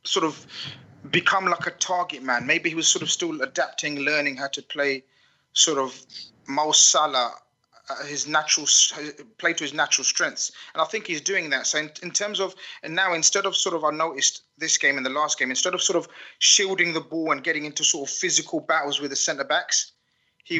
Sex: male